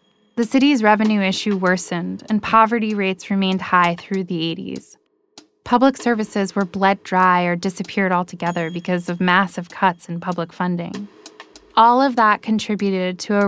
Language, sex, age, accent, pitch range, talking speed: English, female, 10-29, American, 180-215 Hz, 150 wpm